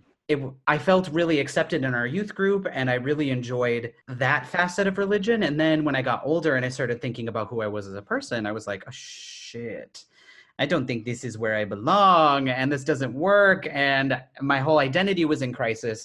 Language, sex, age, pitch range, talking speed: English, male, 30-49, 120-155 Hz, 215 wpm